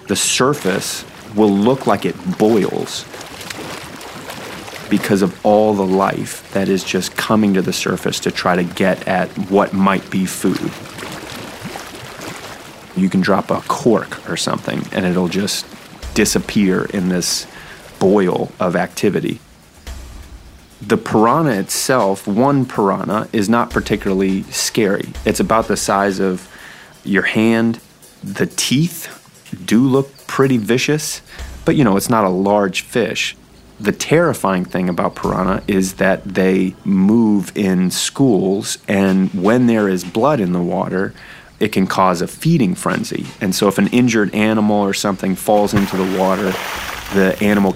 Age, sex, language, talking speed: 30-49, male, English, 140 wpm